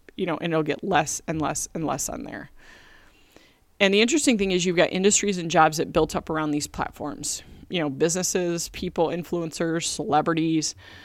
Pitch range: 160-195 Hz